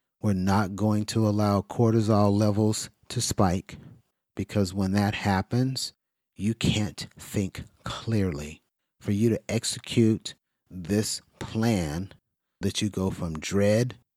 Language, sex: English, male